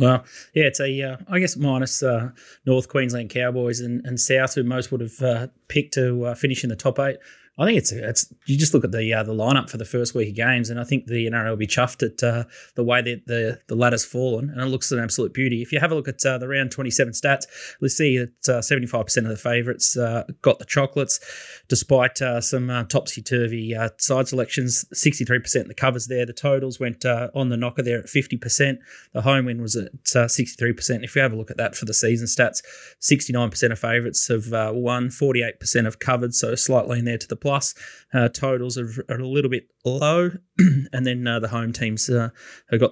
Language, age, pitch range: English, 20-39, 120-135 Hz